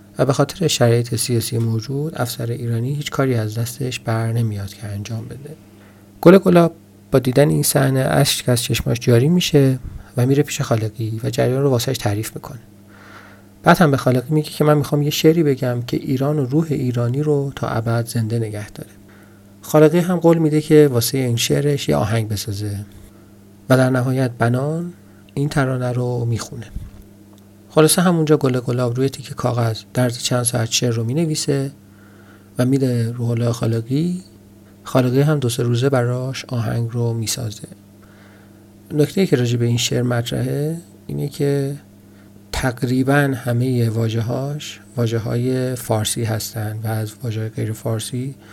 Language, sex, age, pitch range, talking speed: Persian, male, 40-59, 110-140 Hz, 160 wpm